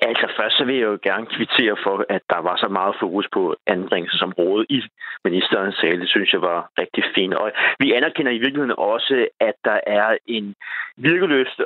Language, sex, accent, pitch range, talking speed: Danish, male, native, 110-145 Hz, 190 wpm